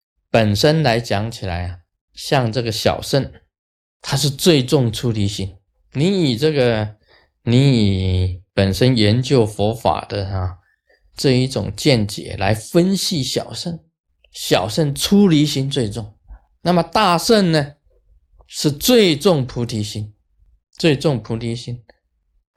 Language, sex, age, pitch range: Chinese, male, 20-39, 100-150 Hz